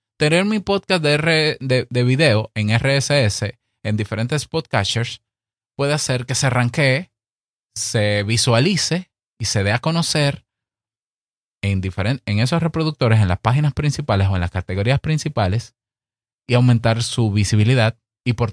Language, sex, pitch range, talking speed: Spanish, male, 100-135 Hz, 145 wpm